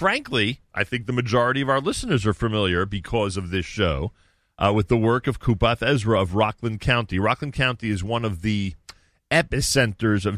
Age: 40-59